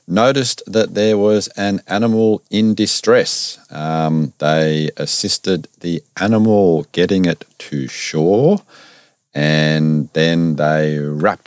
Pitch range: 75-110 Hz